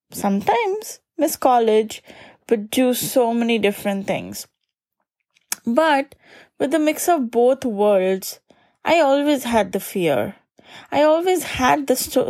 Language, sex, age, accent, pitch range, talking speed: English, female, 20-39, Indian, 210-295 Hz, 125 wpm